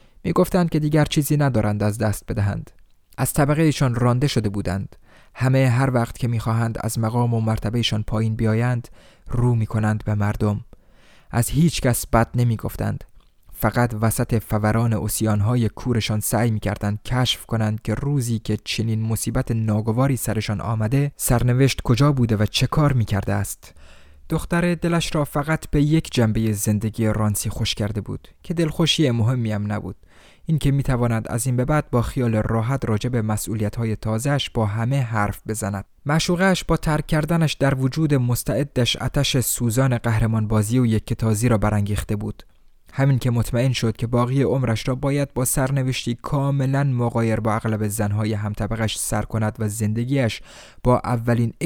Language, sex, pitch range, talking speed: Persian, male, 110-135 Hz, 155 wpm